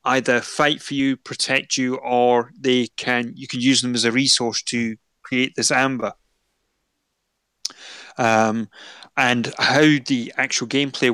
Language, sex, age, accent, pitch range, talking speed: English, male, 30-49, British, 120-140 Hz, 140 wpm